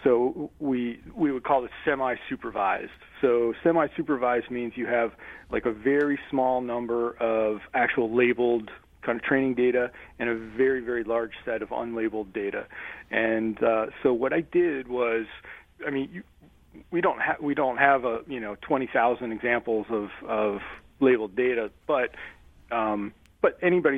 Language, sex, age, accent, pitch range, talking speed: English, male, 40-59, American, 110-130 Hz, 155 wpm